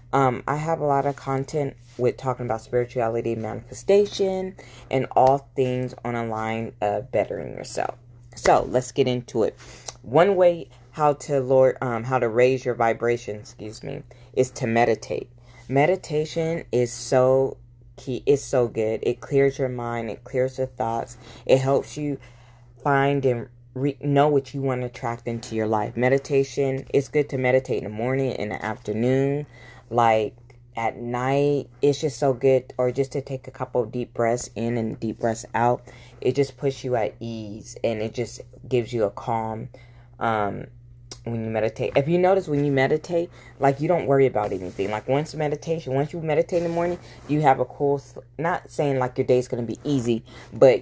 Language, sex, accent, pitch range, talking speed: English, female, American, 120-140 Hz, 185 wpm